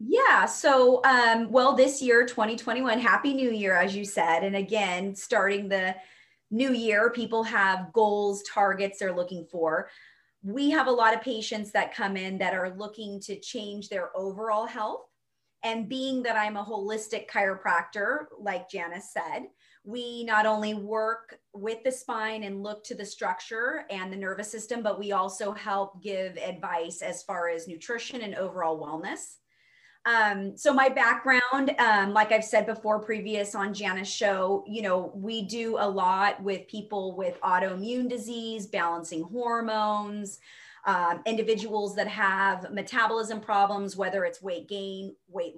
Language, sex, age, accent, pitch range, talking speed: English, female, 30-49, American, 190-225 Hz, 155 wpm